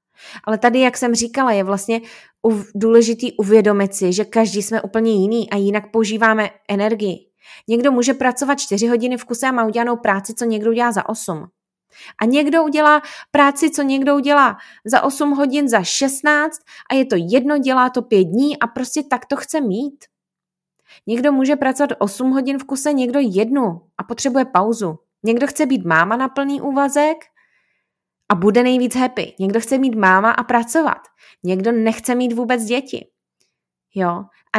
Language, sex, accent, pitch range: Czech, female, native, 200-255 Hz